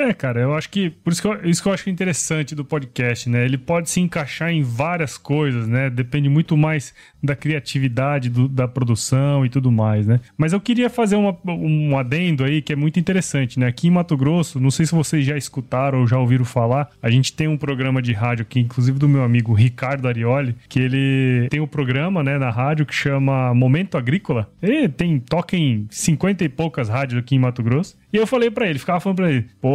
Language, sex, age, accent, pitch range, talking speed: Portuguese, male, 20-39, Brazilian, 135-185 Hz, 225 wpm